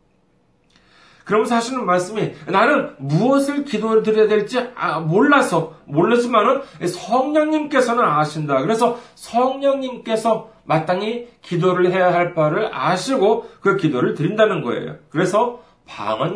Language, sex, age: Korean, male, 40-59